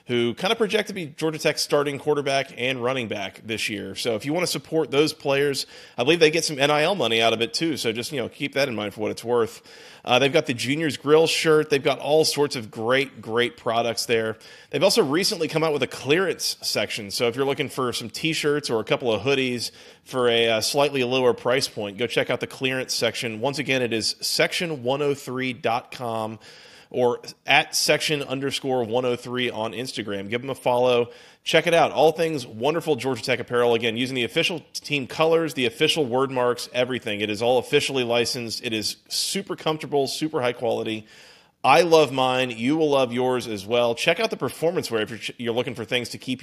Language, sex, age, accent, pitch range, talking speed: English, male, 30-49, American, 115-150 Hz, 215 wpm